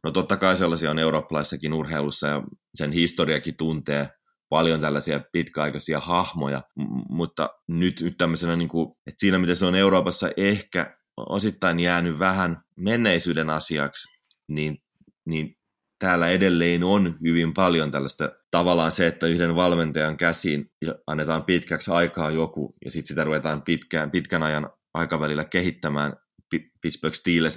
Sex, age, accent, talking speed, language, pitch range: male, 20-39, native, 130 wpm, Finnish, 75-85 Hz